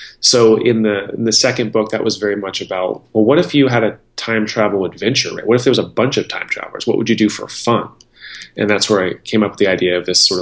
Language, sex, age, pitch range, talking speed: English, male, 30-49, 90-110 Hz, 280 wpm